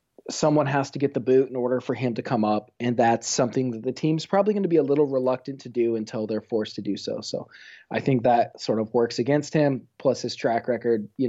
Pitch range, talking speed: 110-135 Hz, 255 wpm